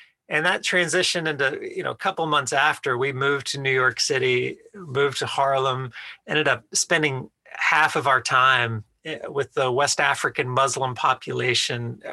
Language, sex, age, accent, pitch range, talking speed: English, male, 40-59, American, 120-160 Hz, 160 wpm